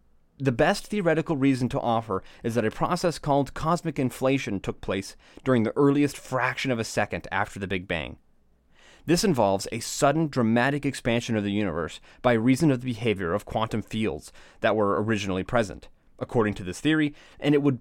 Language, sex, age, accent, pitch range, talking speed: English, male, 30-49, American, 100-145 Hz, 180 wpm